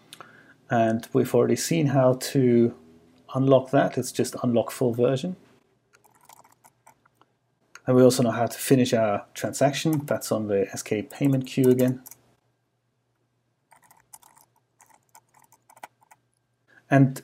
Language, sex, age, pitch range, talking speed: English, male, 30-49, 120-135 Hz, 105 wpm